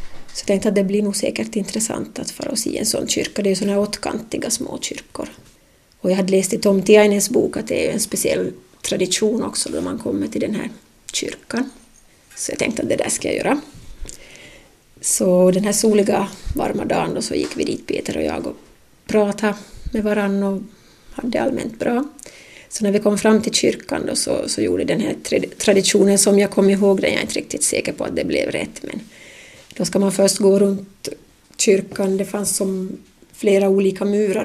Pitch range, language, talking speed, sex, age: 195-220 Hz, Swedish, 210 wpm, female, 30-49